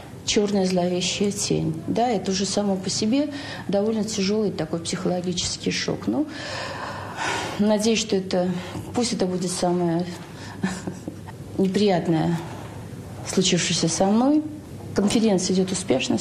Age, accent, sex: 40-59, native, female